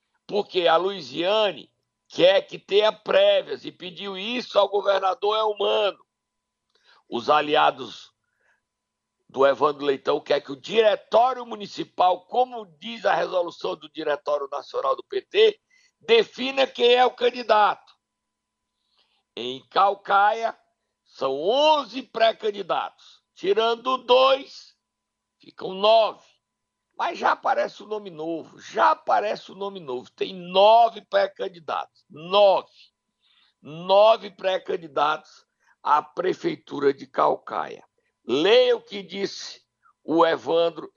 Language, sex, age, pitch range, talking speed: Portuguese, male, 60-79, 190-290 Hz, 110 wpm